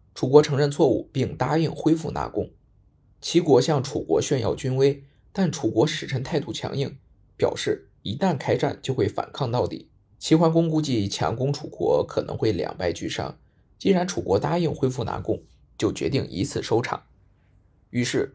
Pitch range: 110-155 Hz